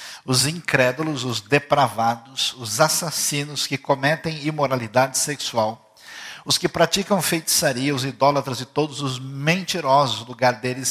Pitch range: 130-165 Hz